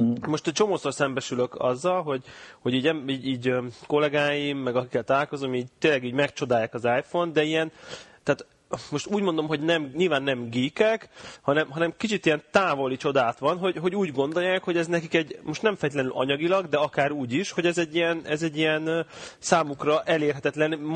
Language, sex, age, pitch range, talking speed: Hungarian, male, 30-49, 130-165 Hz, 175 wpm